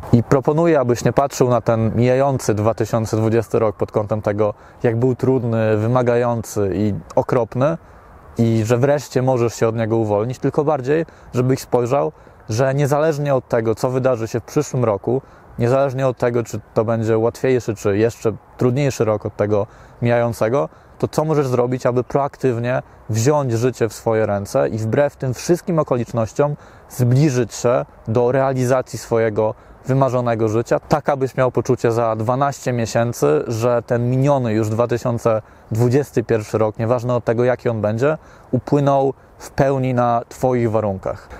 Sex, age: male, 20-39